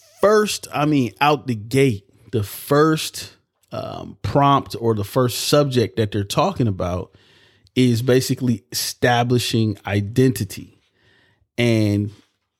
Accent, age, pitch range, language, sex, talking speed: American, 30-49, 100-125 Hz, English, male, 110 wpm